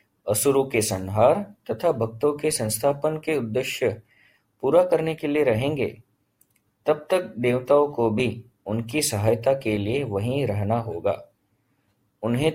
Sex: male